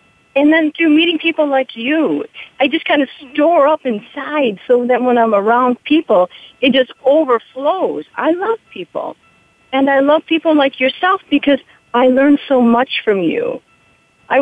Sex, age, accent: female, 50-69, American